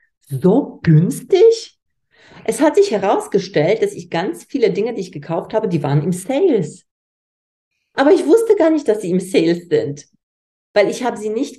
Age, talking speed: 40-59, 175 wpm